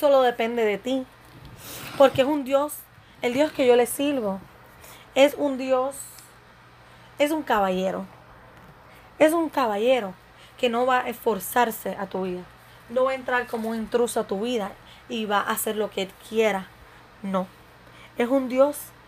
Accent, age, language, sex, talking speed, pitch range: American, 20-39, English, female, 165 wpm, 205-285 Hz